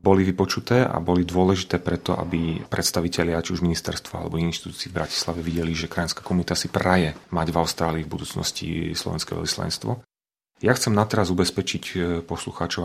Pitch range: 85-95 Hz